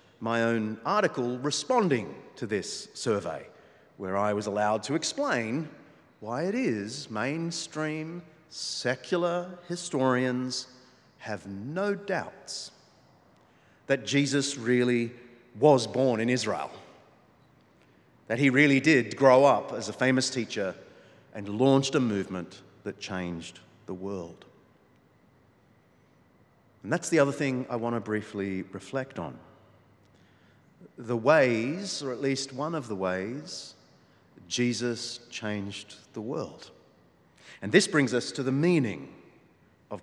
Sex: male